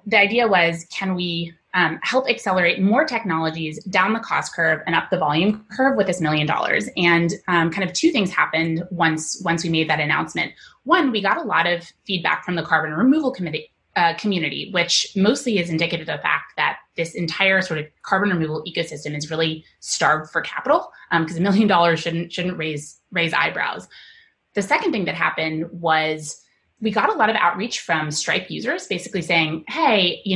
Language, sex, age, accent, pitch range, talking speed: English, female, 20-39, American, 160-205 Hz, 195 wpm